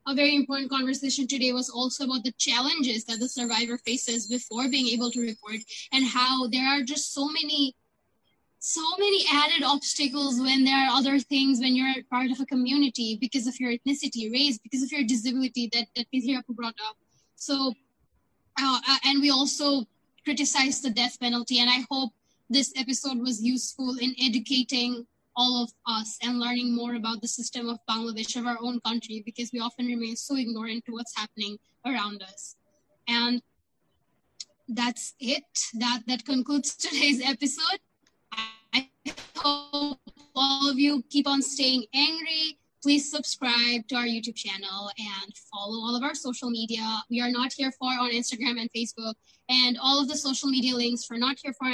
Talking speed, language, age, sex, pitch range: 170 wpm, Bengali, 10-29, female, 235-270 Hz